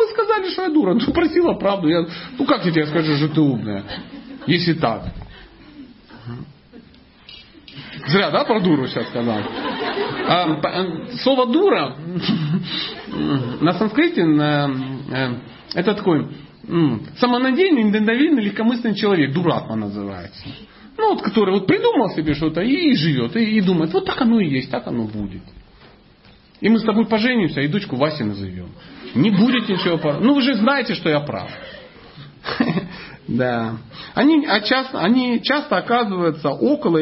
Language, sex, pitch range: Russian, male, 150-235 Hz